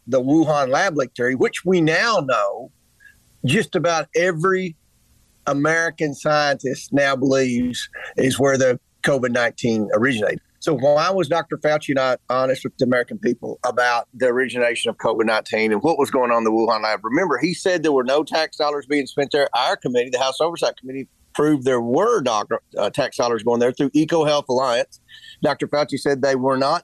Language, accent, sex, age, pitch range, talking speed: English, American, male, 40-59, 130-155 Hz, 175 wpm